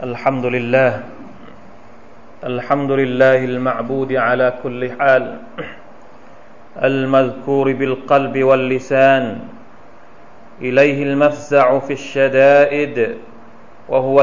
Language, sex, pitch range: Thai, male, 135-150 Hz